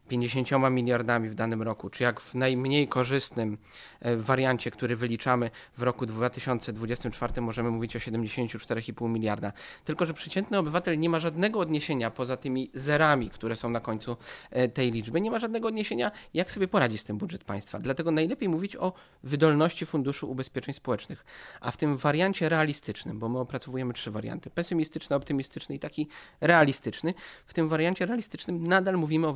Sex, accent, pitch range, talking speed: male, native, 120-160 Hz, 160 wpm